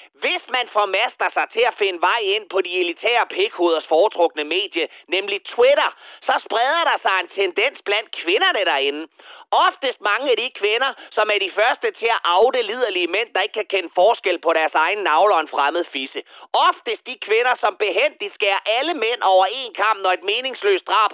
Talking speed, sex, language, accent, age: 195 wpm, male, Danish, native, 30-49